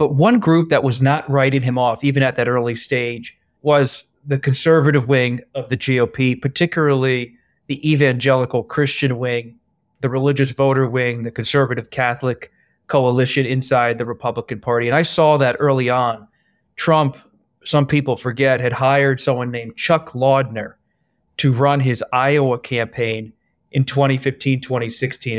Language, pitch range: English, 120-140 Hz